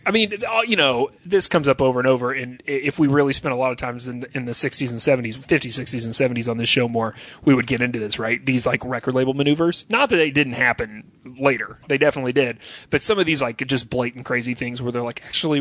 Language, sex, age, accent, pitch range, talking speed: English, male, 30-49, American, 120-155 Hz, 255 wpm